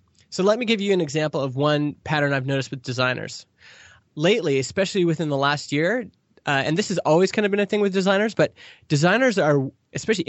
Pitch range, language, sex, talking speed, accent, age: 135-170 Hz, English, male, 210 wpm, American, 20-39